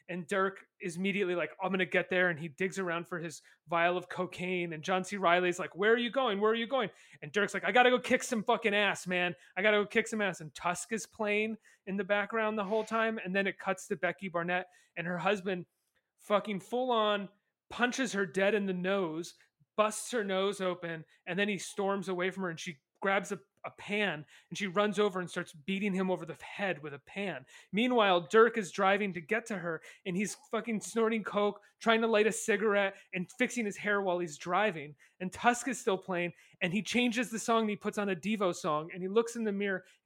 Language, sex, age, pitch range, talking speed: English, male, 30-49, 180-220 Hz, 240 wpm